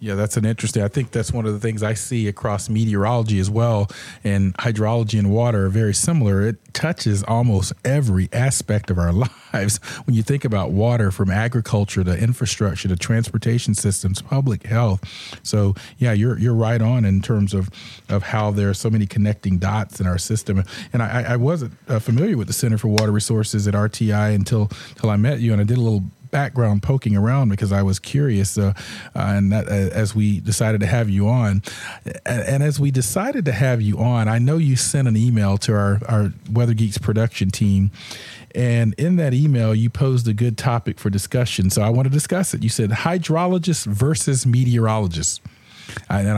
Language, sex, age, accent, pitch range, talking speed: English, male, 40-59, American, 105-125 Hz, 195 wpm